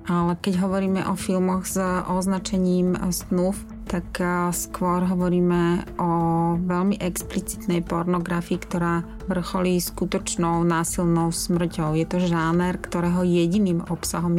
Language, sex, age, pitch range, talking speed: Slovak, female, 30-49, 170-185 Hz, 110 wpm